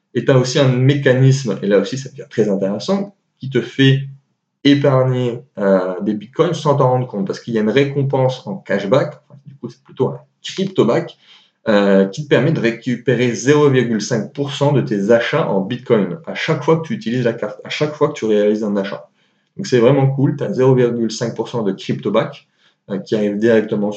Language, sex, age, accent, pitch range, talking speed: French, male, 30-49, French, 110-145 Hz, 195 wpm